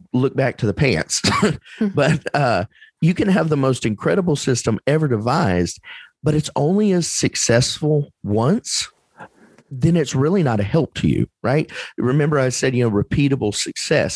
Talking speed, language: 160 wpm, English